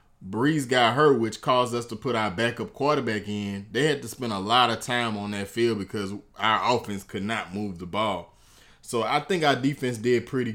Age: 20-39